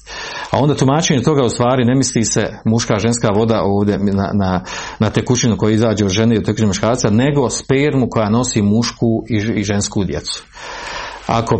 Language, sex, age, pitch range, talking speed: Croatian, male, 40-59, 110-135 Hz, 175 wpm